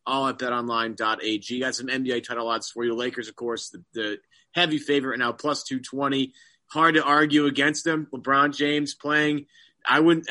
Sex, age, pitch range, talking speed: male, 30-49, 135-165 Hz, 180 wpm